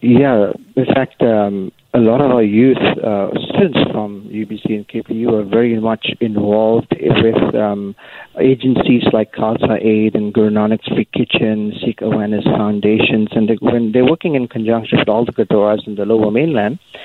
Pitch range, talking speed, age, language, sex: 110-125 Hz, 165 wpm, 50-69, English, male